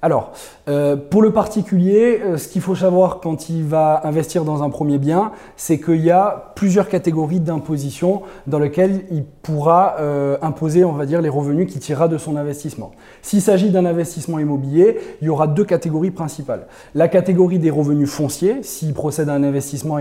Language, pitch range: French, 150-190 Hz